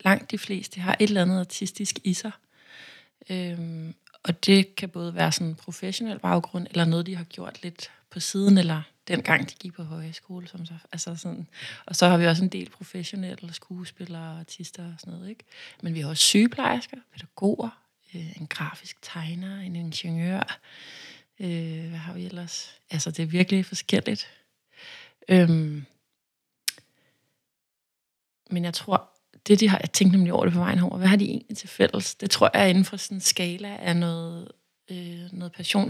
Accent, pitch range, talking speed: native, 170-195 Hz, 180 wpm